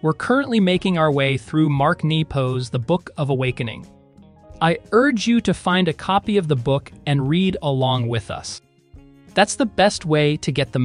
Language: English